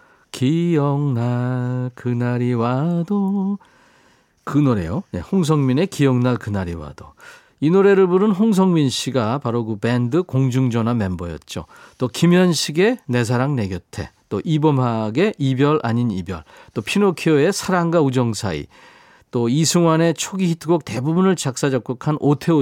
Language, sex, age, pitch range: Korean, male, 40-59, 120-170 Hz